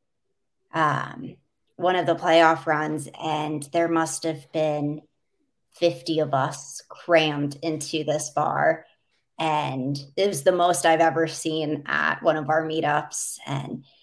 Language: English